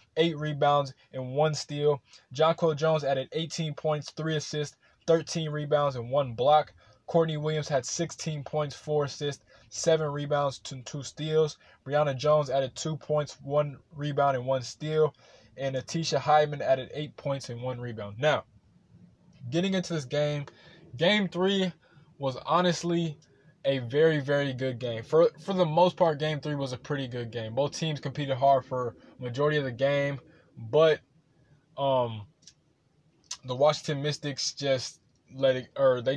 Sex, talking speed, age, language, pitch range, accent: male, 155 wpm, 20-39, English, 135-155 Hz, American